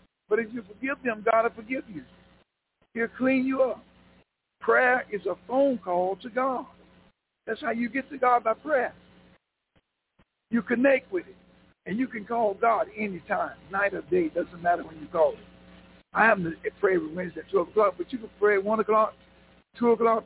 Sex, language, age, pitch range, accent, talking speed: male, English, 60-79, 190-240 Hz, American, 190 wpm